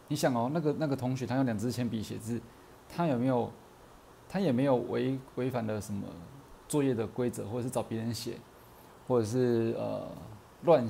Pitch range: 115-140 Hz